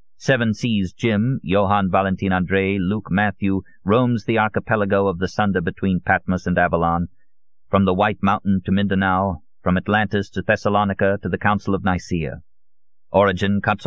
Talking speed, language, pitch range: 150 wpm, English, 90-110 Hz